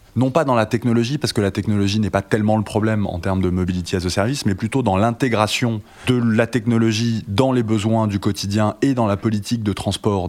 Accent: French